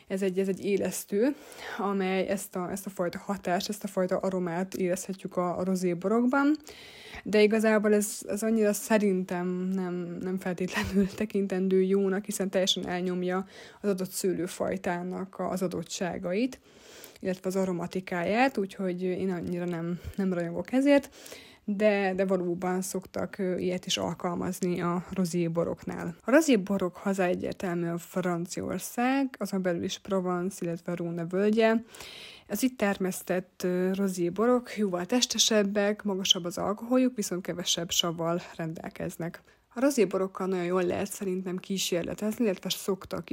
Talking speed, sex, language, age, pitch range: 125 wpm, female, Hungarian, 20-39, 180-205 Hz